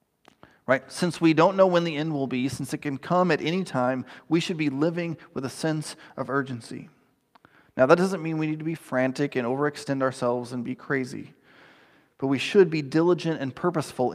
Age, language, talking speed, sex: 30-49, English, 205 wpm, male